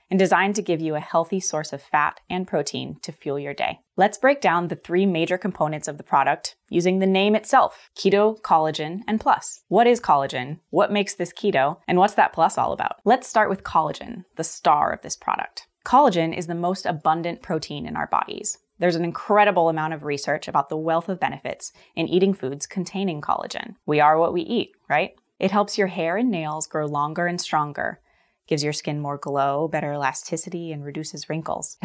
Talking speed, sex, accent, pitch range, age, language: 205 wpm, female, American, 155-190 Hz, 20-39, English